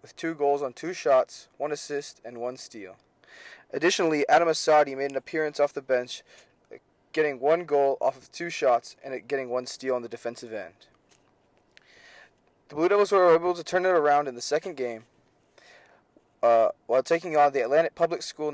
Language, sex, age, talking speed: English, male, 20-39, 180 wpm